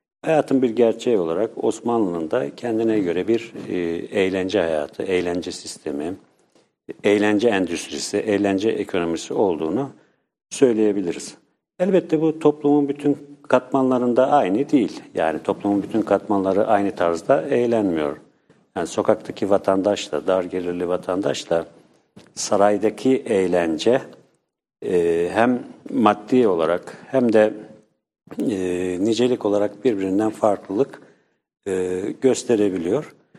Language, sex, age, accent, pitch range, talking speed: English, male, 50-69, Turkish, 90-115 Hz, 100 wpm